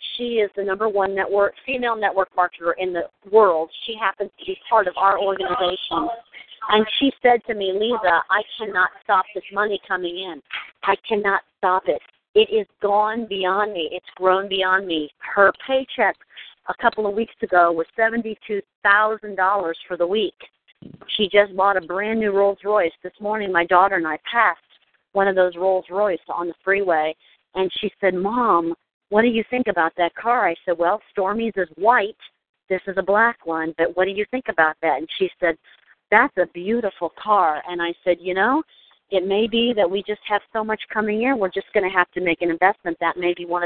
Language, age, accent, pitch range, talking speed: English, 50-69, American, 180-215 Hz, 200 wpm